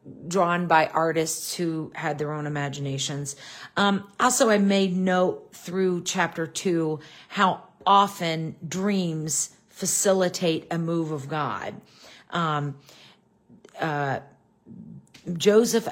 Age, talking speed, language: 40-59, 100 wpm, English